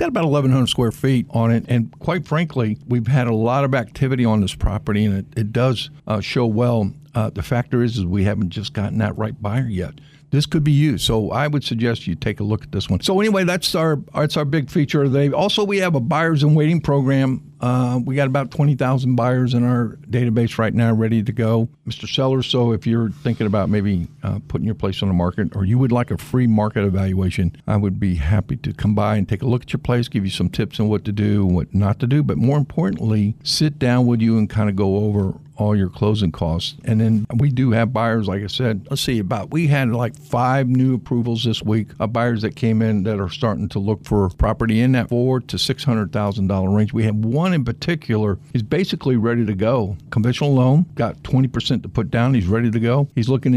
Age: 50-69